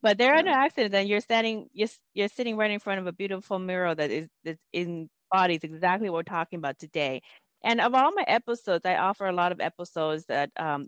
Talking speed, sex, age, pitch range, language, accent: 225 wpm, female, 30-49, 165-210 Hz, English, American